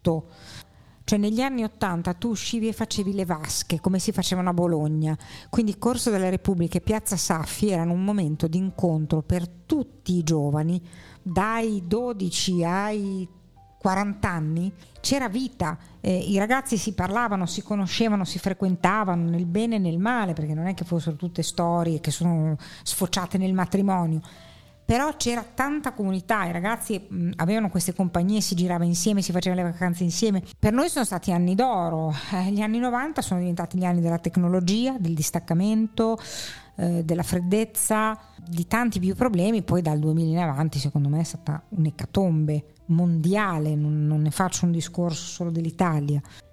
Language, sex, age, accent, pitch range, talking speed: Italian, female, 50-69, native, 165-205 Hz, 160 wpm